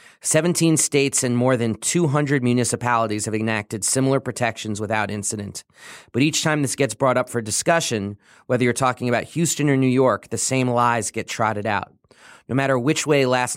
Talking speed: 180 wpm